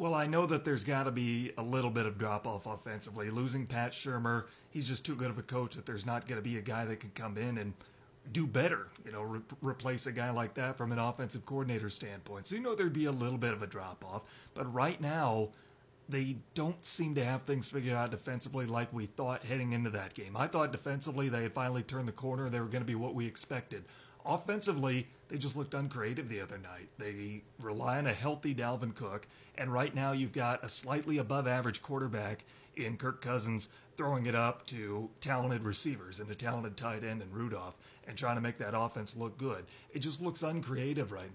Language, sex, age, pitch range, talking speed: English, male, 30-49, 110-140 Hz, 220 wpm